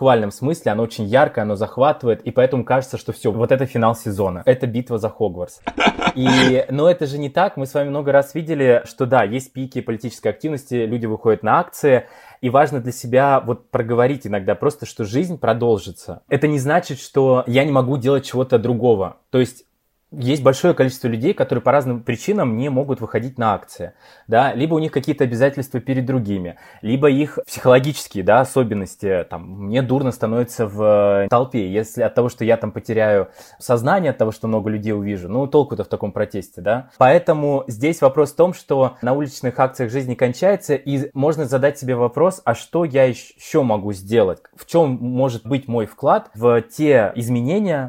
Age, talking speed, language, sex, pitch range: 20-39, 190 wpm, Russian, male, 115-140 Hz